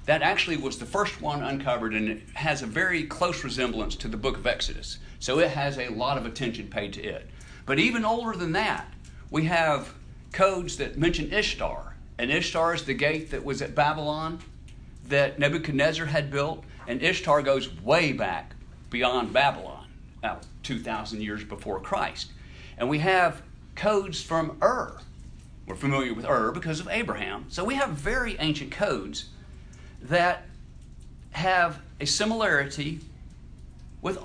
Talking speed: 155 wpm